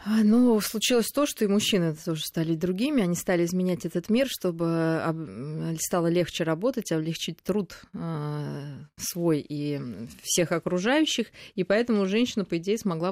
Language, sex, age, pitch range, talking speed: Russian, female, 20-39, 165-205 Hz, 135 wpm